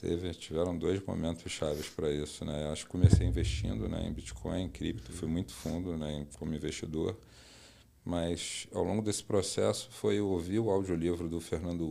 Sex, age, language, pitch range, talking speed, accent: male, 40-59, Portuguese, 80-95 Hz, 180 wpm, Brazilian